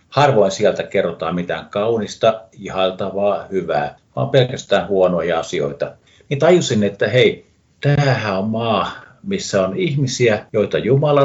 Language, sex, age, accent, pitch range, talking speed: Finnish, male, 50-69, native, 95-125 Hz, 125 wpm